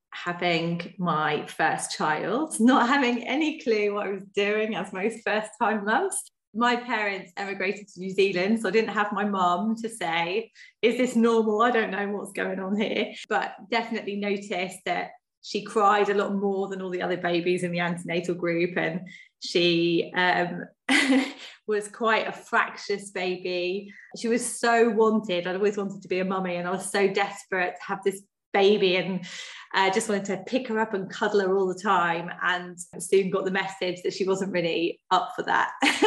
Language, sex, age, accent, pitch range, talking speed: English, female, 20-39, British, 180-225 Hz, 185 wpm